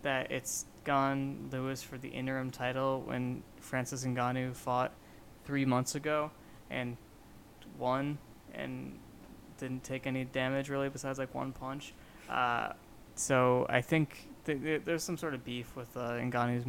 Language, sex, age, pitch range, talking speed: English, male, 20-39, 120-140 Hz, 140 wpm